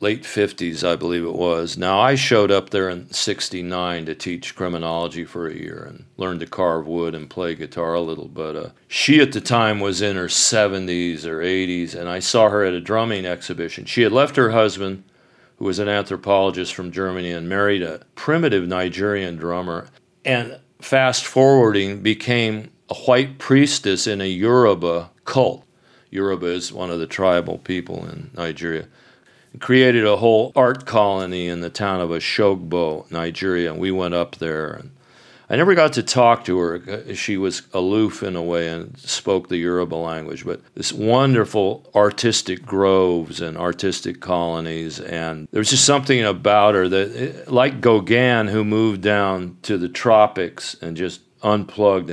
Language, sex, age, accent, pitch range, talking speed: English, male, 40-59, American, 85-110 Hz, 170 wpm